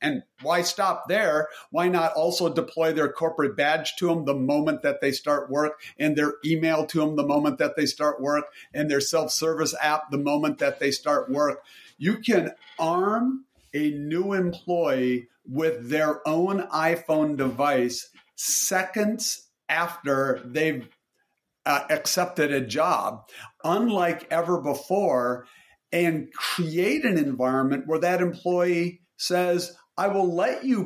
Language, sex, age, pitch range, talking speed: English, male, 50-69, 145-185 Hz, 140 wpm